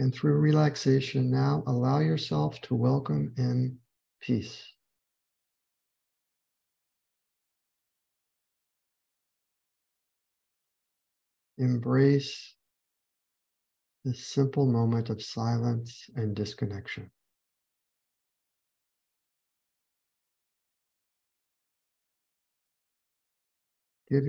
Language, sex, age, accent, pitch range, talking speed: English, male, 50-69, American, 105-130 Hz, 45 wpm